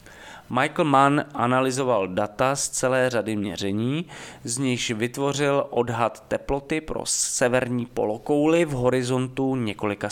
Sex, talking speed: male, 115 wpm